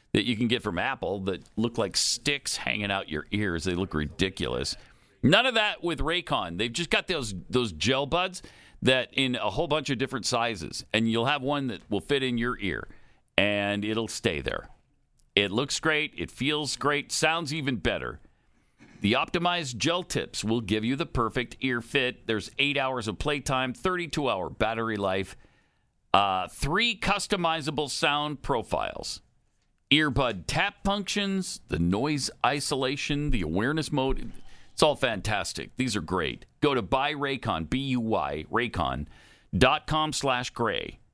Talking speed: 155 wpm